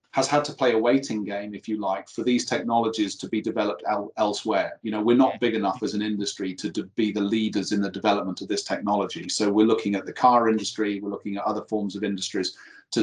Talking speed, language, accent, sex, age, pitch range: 235 wpm, English, British, male, 40-59, 100-120 Hz